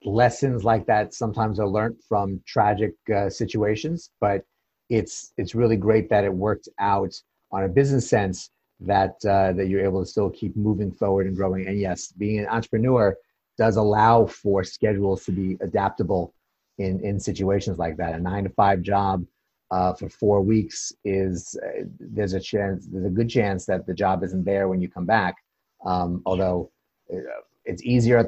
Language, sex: English, male